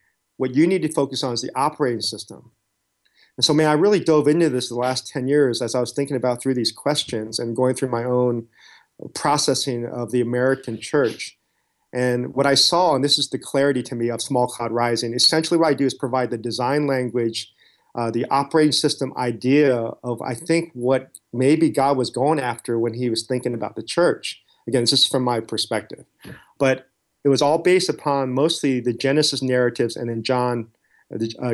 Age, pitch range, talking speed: 40-59, 120-145 Hz, 200 wpm